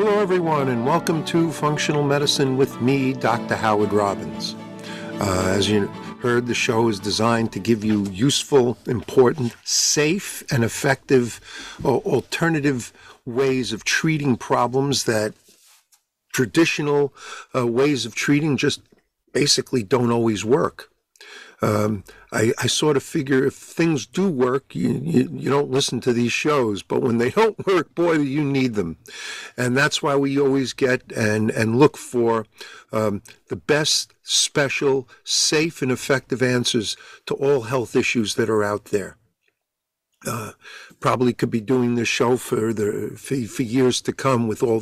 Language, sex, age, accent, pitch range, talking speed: English, male, 50-69, American, 110-140 Hz, 150 wpm